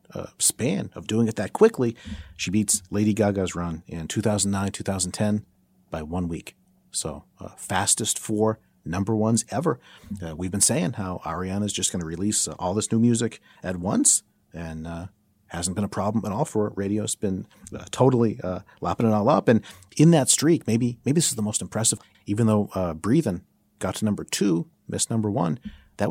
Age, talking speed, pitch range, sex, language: 40-59, 190 wpm, 90-115 Hz, male, English